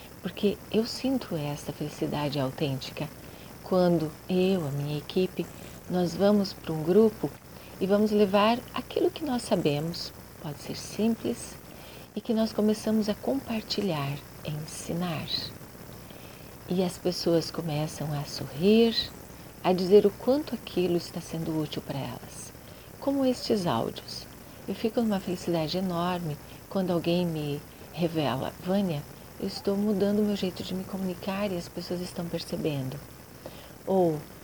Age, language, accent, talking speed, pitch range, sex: 50-69, Portuguese, Brazilian, 135 wpm, 160-210 Hz, female